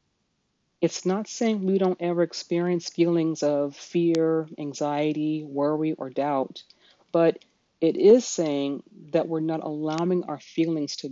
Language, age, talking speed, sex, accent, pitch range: English, 40-59, 135 wpm, female, American, 150-175 Hz